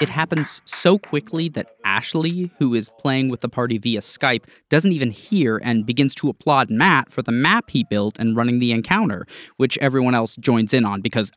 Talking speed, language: 200 wpm, English